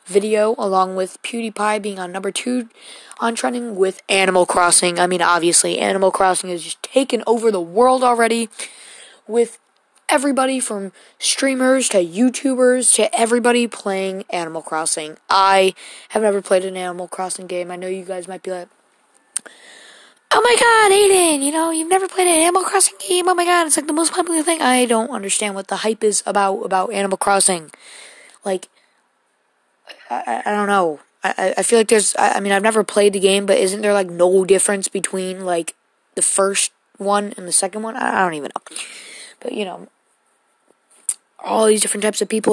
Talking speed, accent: 185 wpm, American